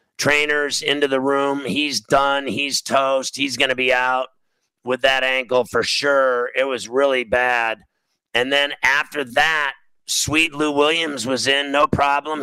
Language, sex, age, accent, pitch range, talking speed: English, male, 50-69, American, 130-150 Hz, 160 wpm